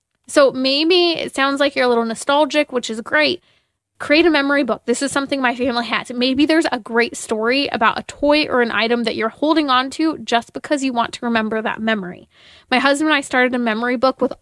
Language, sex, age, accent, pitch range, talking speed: English, female, 20-39, American, 230-285 Hz, 230 wpm